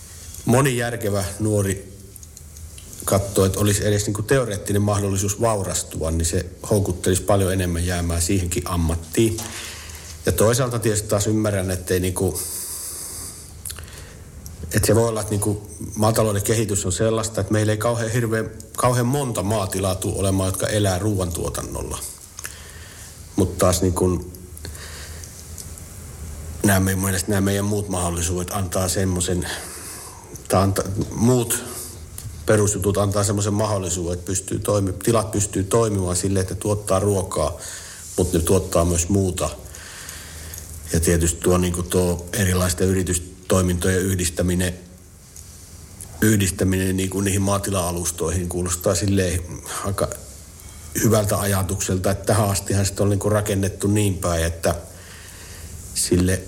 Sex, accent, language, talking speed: male, native, Finnish, 120 wpm